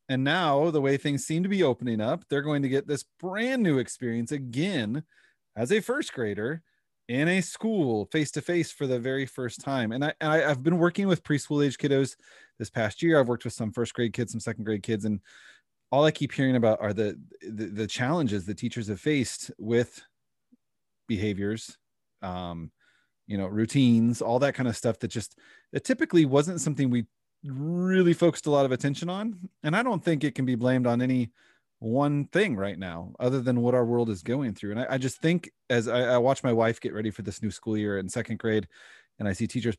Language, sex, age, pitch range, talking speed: English, male, 30-49, 110-145 Hz, 215 wpm